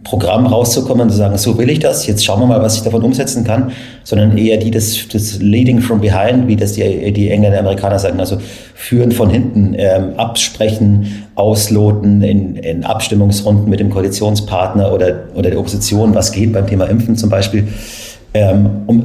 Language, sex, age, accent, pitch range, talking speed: German, male, 40-59, German, 100-115 Hz, 190 wpm